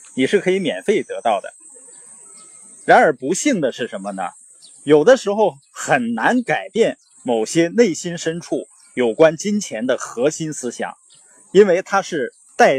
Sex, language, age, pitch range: male, Chinese, 20-39, 145-235 Hz